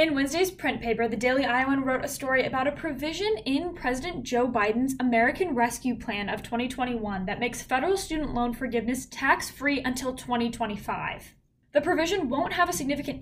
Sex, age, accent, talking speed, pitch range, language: female, 10-29, American, 170 wpm, 230-285 Hz, English